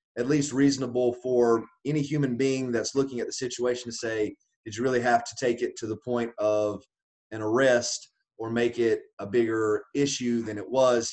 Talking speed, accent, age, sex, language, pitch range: 195 wpm, American, 30-49, male, English, 110-130 Hz